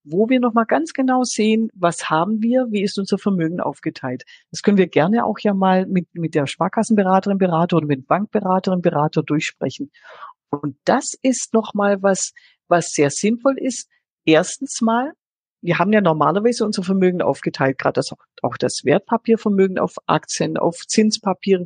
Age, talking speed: 50-69, 160 wpm